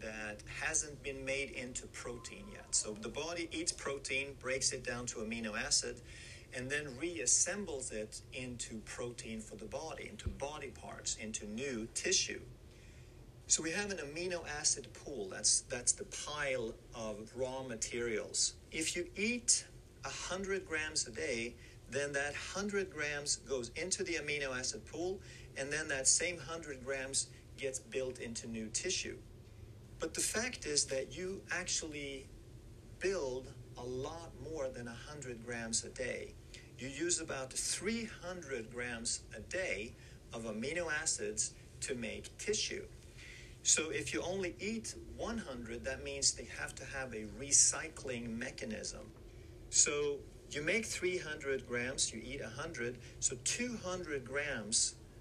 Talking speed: 140 wpm